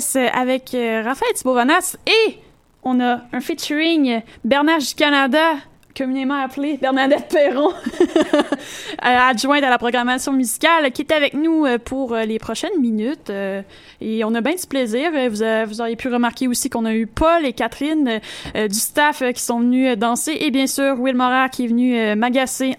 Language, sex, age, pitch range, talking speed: French, female, 20-39, 245-290 Hz, 165 wpm